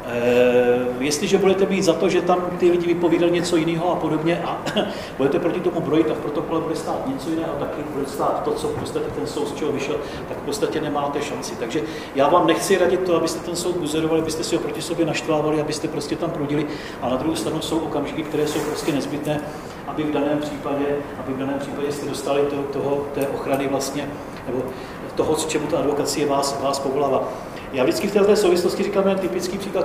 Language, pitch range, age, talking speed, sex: Czech, 150-180 Hz, 40-59, 215 wpm, male